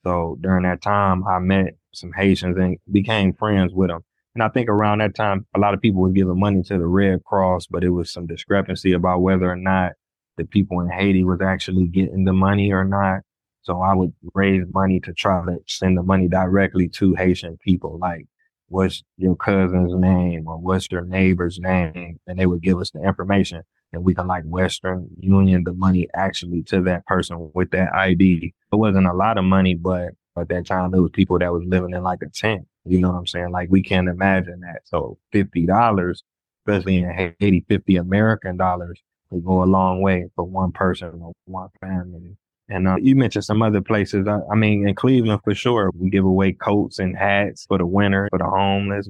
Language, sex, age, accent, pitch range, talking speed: English, male, 20-39, American, 90-100 Hz, 210 wpm